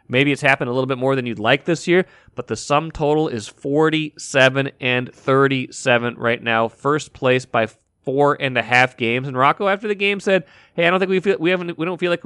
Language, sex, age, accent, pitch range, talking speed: English, male, 30-49, American, 125-165 Hz, 235 wpm